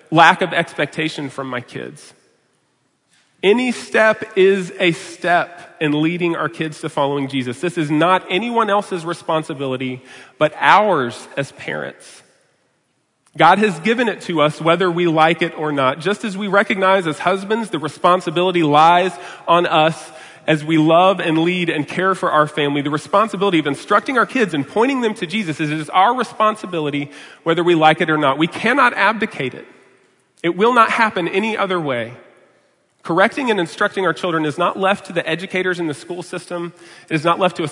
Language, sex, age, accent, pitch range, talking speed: English, male, 40-59, American, 155-195 Hz, 180 wpm